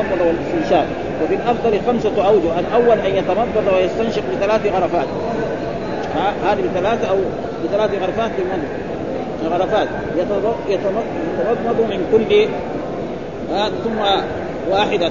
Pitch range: 185-220 Hz